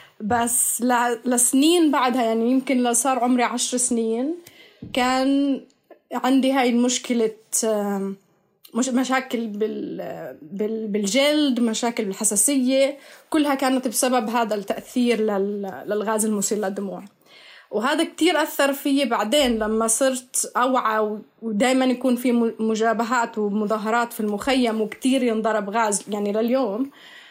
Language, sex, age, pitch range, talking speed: Arabic, female, 20-39, 220-260 Hz, 100 wpm